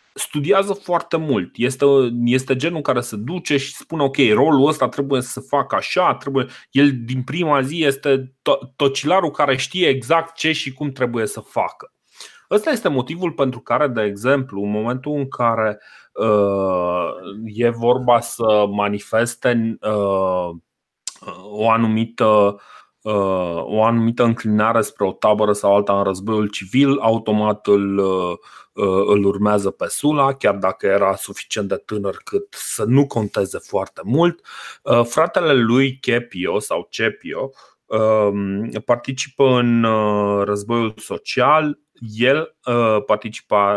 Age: 30-49